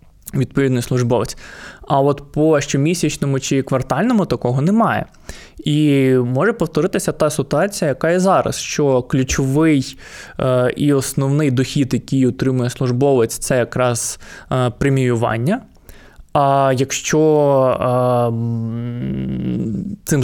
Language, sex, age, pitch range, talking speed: Ukrainian, male, 20-39, 125-145 Hz, 95 wpm